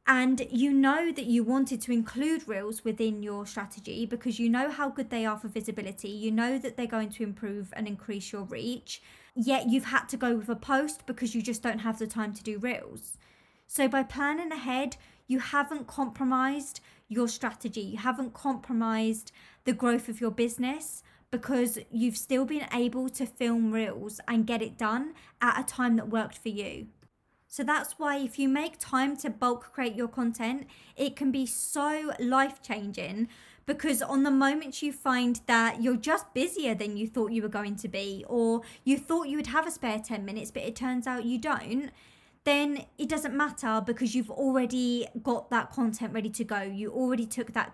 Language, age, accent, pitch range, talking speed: English, 20-39, British, 225-270 Hz, 195 wpm